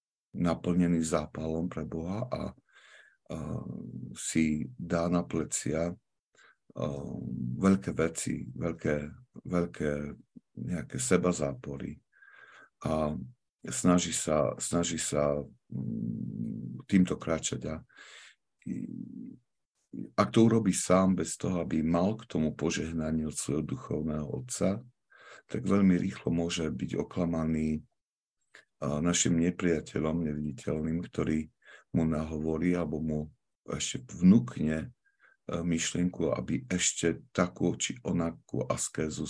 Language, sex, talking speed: Slovak, male, 95 wpm